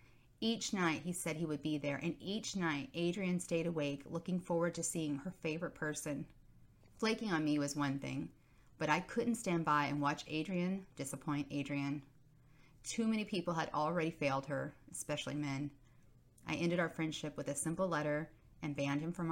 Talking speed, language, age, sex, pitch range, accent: 180 wpm, English, 30-49, female, 140-165 Hz, American